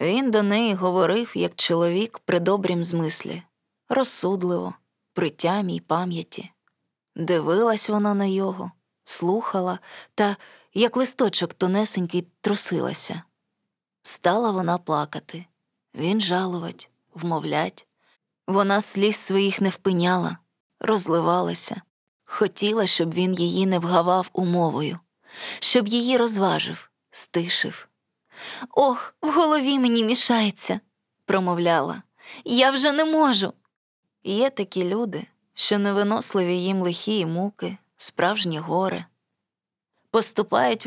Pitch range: 175-220 Hz